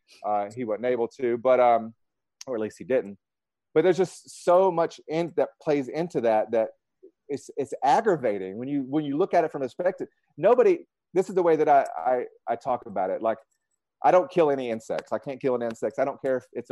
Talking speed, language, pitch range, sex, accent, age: 230 wpm, English, 140-195 Hz, male, American, 30-49